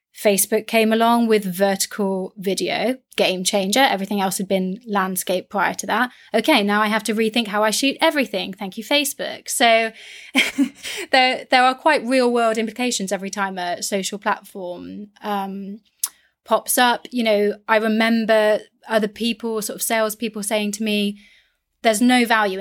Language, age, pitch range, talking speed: English, 20-39, 200-240 Hz, 160 wpm